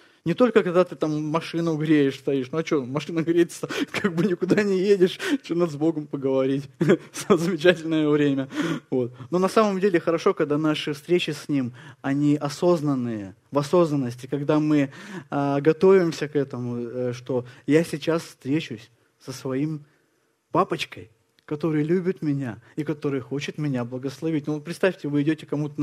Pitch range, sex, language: 135-170 Hz, male, Russian